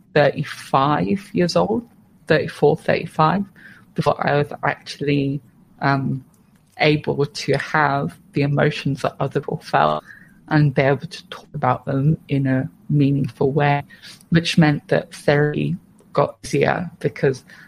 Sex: female